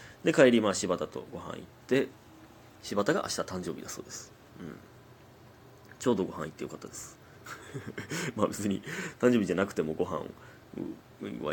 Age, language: 30-49, Japanese